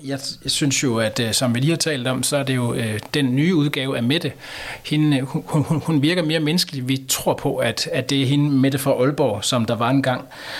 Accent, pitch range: native, 120-145 Hz